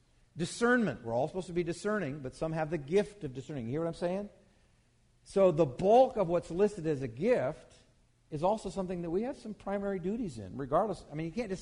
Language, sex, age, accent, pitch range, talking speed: English, male, 50-69, American, 125-185 Hz, 225 wpm